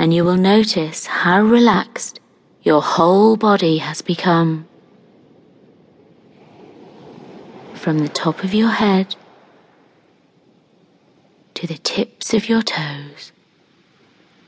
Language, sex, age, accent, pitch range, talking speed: English, female, 30-49, British, 160-200 Hz, 95 wpm